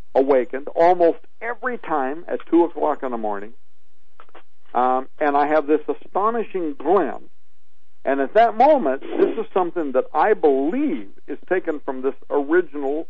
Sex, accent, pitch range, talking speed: male, American, 125-175 Hz, 145 wpm